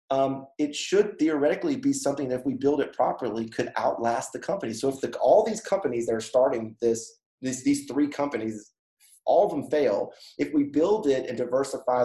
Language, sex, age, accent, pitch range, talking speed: English, male, 30-49, American, 110-140 Hz, 195 wpm